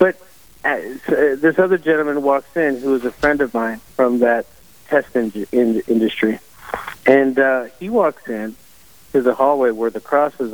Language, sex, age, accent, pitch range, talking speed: English, male, 50-69, American, 120-140 Hz, 160 wpm